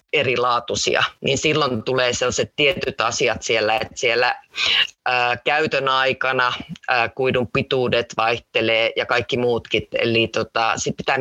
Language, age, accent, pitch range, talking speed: Finnish, 30-49, native, 115-145 Hz, 110 wpm